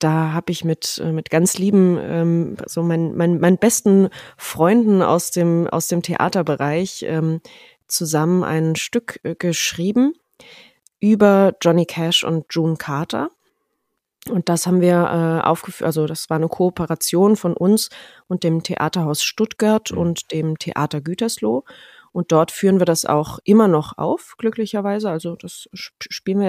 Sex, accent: female, German